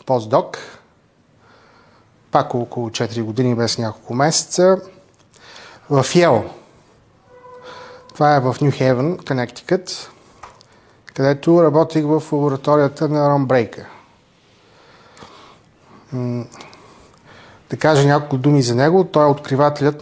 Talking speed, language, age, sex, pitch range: 90 wpm, Bulgarian, 30-49, male, 125-155 Hz